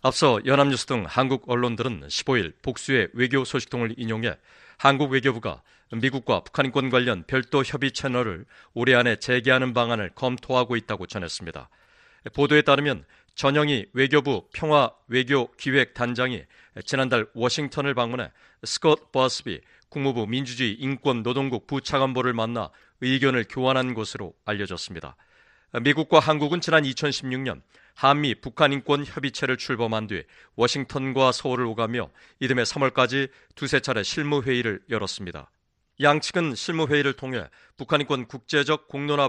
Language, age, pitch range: Korean, 40-59, 120-140 Hz